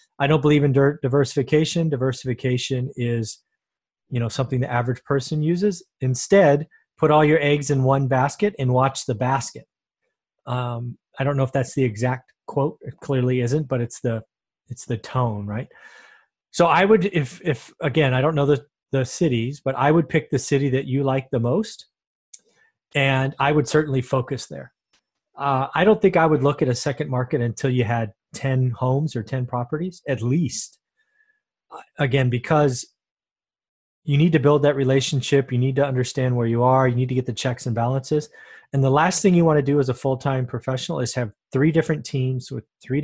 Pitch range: 125-160 Hz